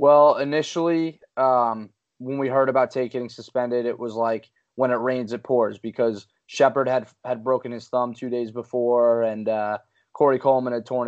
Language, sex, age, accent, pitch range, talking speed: English, male, 20-39, American, 115-130 Hz, 185 wpm